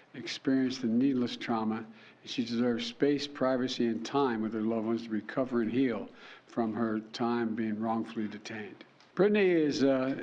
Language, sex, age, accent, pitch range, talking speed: English, male, 60-79, American, 115-135 Hz, 165 wpm